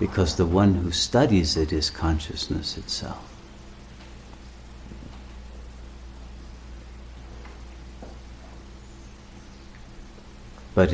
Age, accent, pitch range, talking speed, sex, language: 60-79, American, 65-95 Hz, 55 wpm, male, English